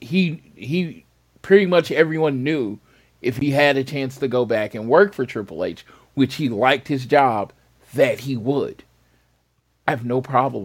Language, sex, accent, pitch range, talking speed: English, male, American, 120-160 Hz, 175 wpm